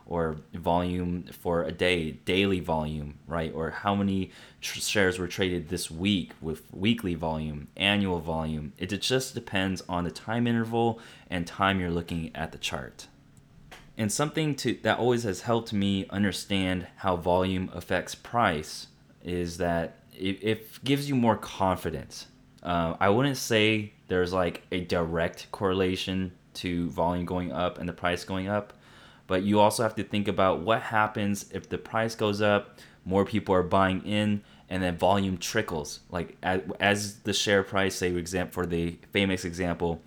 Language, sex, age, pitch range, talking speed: English, male, 20-39, 85-100 Hz, 165 wpm